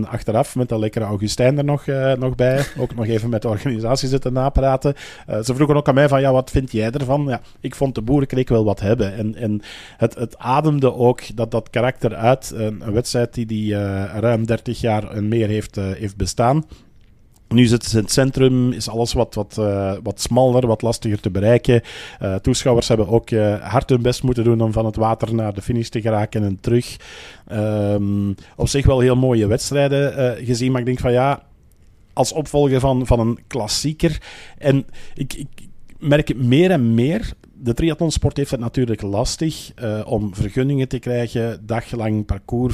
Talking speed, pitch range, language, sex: 195 wpm, 110-130 Hz, Dutch, male